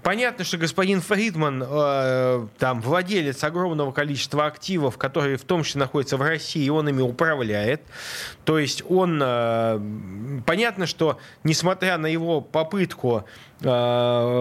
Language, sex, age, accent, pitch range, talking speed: Russian, male, 20-39, native, 120-165 Hz, 135 wpm